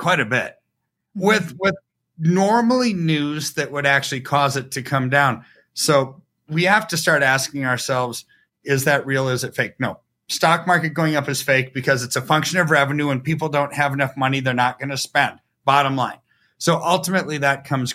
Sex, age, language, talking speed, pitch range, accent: male, 30-49, English, 195 wpm, 125-160 Hz, American